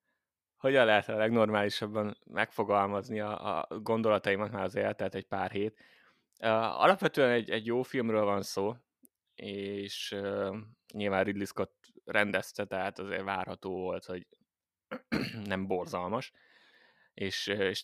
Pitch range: 95-115 Hz